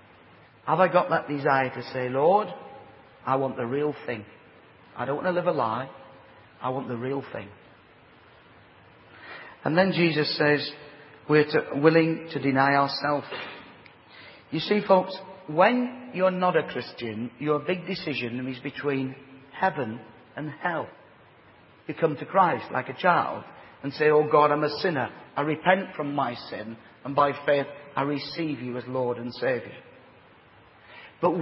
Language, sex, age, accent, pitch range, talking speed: English, male, 40-59, British, 135-175 Hz, 155 wpm